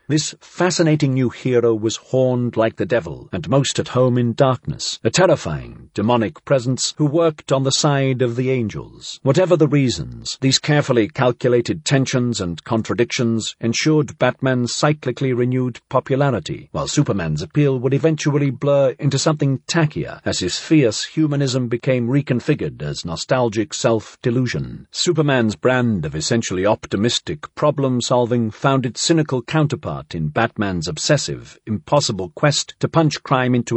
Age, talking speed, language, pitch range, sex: 50-69, 140 wpm, English, 120-150 Hz, male